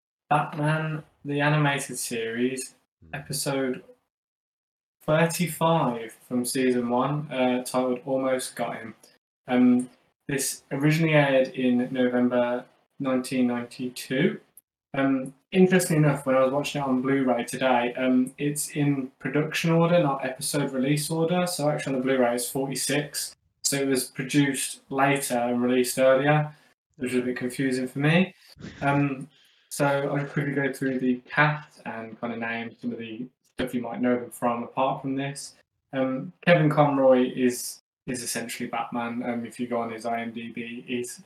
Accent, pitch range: British, 125-140 Hz